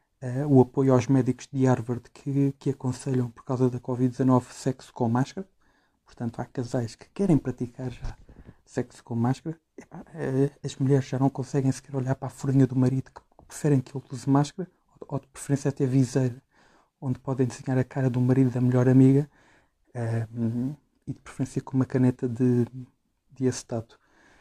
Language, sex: Portuguese, male